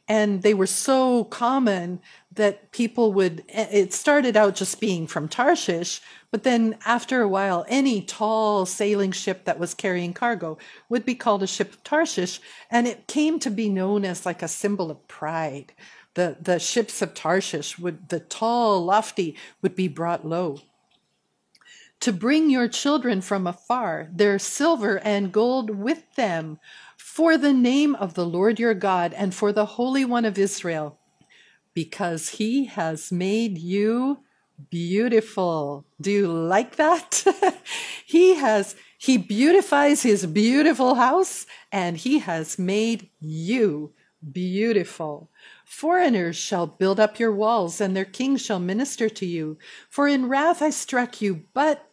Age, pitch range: 50-69, 185-245 Hz